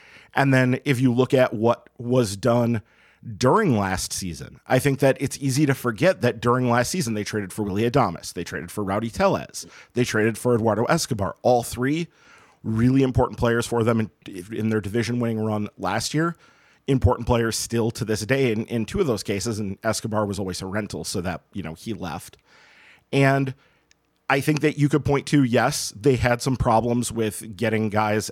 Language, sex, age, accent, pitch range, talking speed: English, male, 40-59, American, 105-130 Hz, 195 wpm